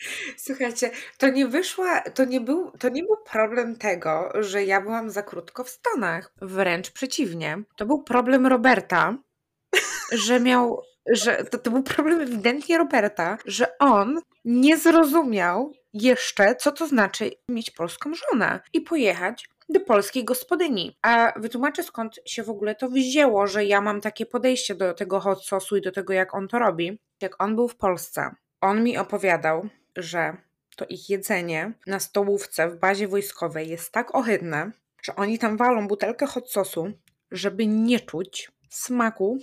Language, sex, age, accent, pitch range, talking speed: Polish, female, 20-39, native, 195-250 Hz, 160 wpm